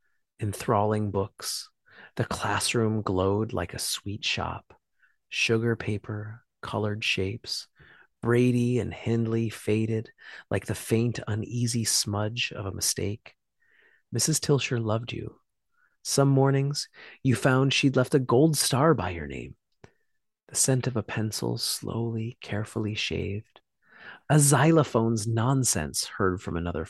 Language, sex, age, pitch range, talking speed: English, male, 30-49, 105-135 Hz, 125 wpm